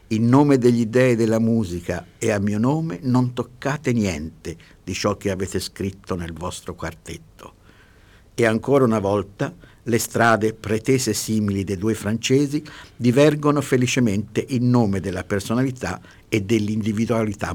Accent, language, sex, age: native, Italian, male, 60-79